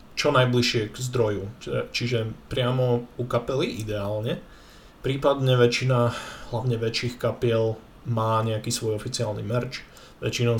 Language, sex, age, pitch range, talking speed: Slovak, male, 20-39, 110-125 Hz, 115 wpm